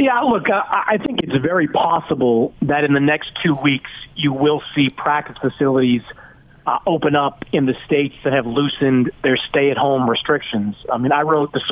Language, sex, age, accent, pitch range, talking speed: English, male, 40-59, American, 140-180 Hz, 180 wpm